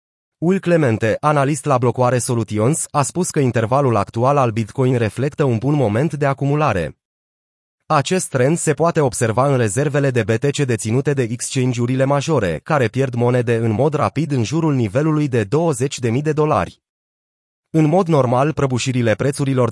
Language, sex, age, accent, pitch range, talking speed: Romanian, male, 30-49, native, 120-150 Hz, 150 wpm